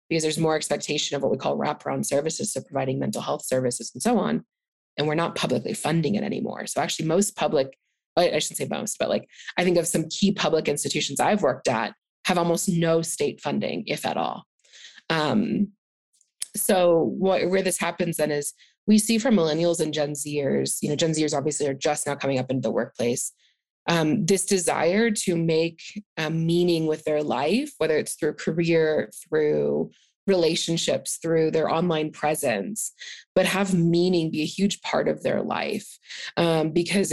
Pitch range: 155-190 Hz